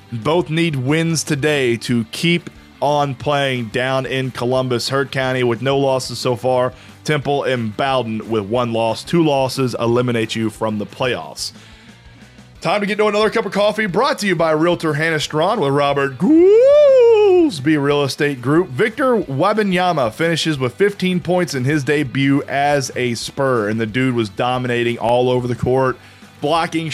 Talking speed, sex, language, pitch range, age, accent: 165 wpm, male, English, 120-155 Hz, 30-49, American